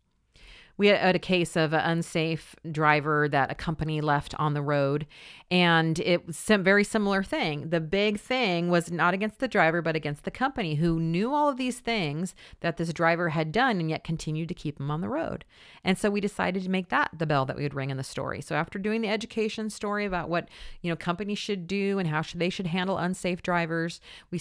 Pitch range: 155-205 Hz